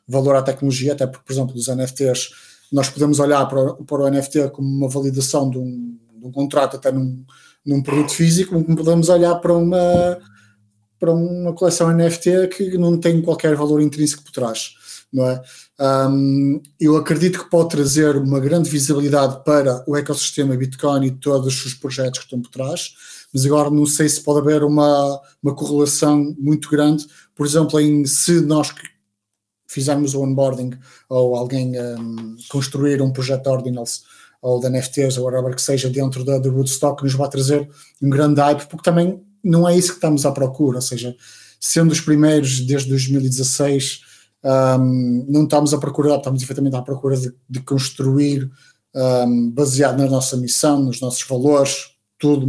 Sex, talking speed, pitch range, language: male, 175 wpm, 130-150 Hz, Portuguese